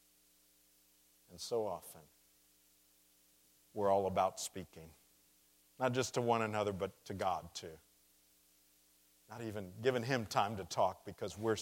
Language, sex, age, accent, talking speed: English, male, 50-69, American, 130 wpm